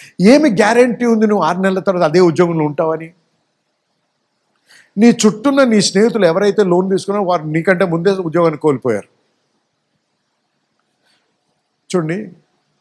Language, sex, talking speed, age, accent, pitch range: Telugu, male, 110 wpm, 50-69, native, 165-220 Hz